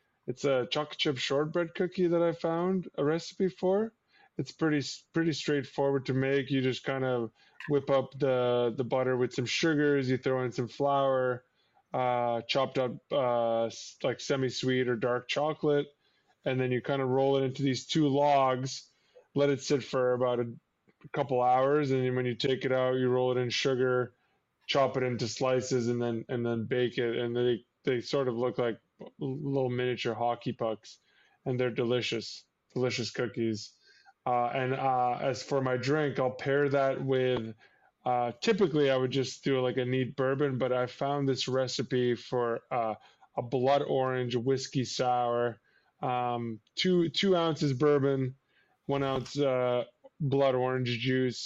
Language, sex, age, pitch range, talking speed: English, male, 20-39, 125-140 Hz, 170 wpm